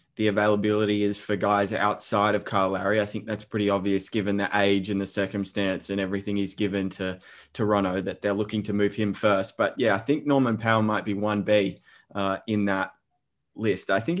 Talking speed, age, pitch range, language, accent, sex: 205 wpm, 20-39, 105-115 Hz, English, Australian, male